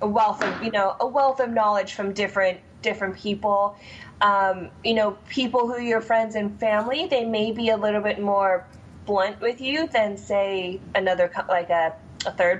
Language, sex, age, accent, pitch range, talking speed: English, female, 20-39, American, 185-220 Hz, 185 wpm